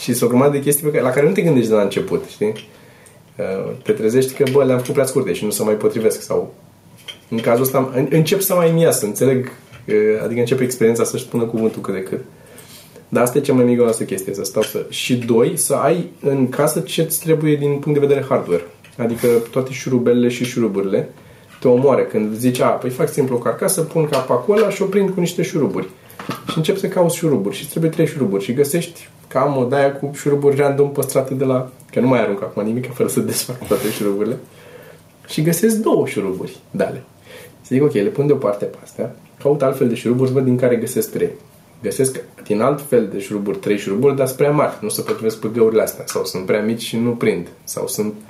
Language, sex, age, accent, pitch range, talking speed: Romanian, male, 20-39, native, 120-155 Hz, 220 wpm